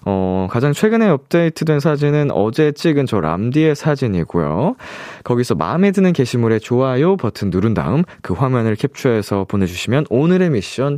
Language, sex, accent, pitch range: Korean, male, native, 105-155 Hz